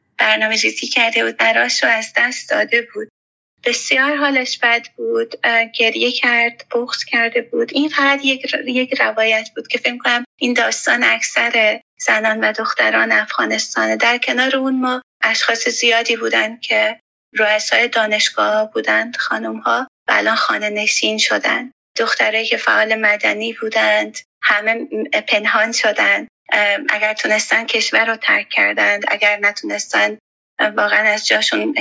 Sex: female